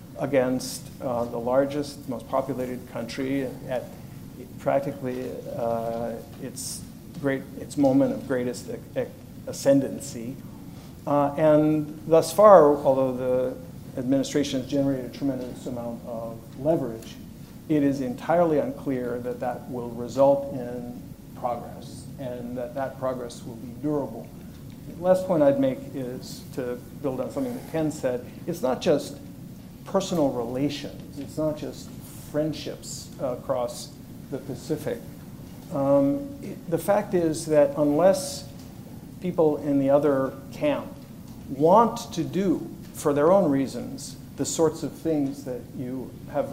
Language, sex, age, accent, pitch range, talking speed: English, male, 50-69, American, 125-150 Hz, 130 wpm